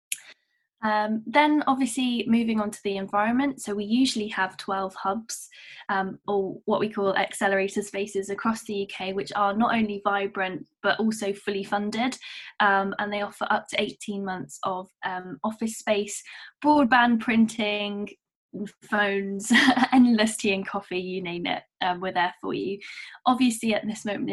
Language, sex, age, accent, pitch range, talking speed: English, female, 10-29, British, 195-220 Hz, 160 wpm